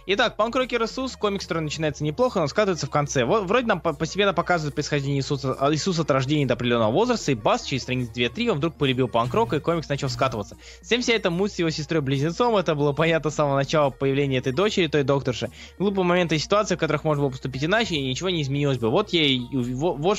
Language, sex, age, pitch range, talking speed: Russian, male, 20-39, 130-185 Hz, 225 wpm